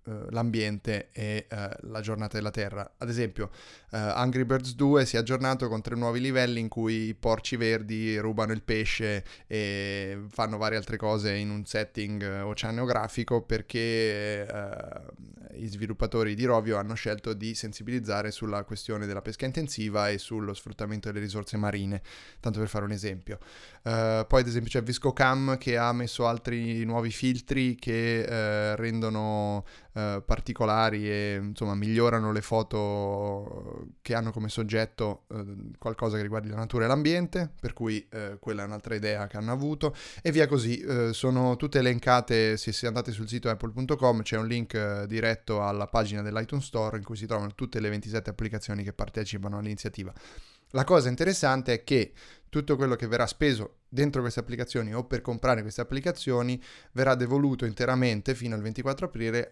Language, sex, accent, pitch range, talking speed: Italian, male, native, 105-125 Hz, 160 wpm